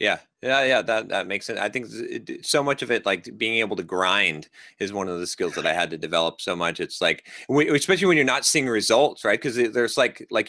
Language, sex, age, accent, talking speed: English, male, 30-49, American, 250 wpm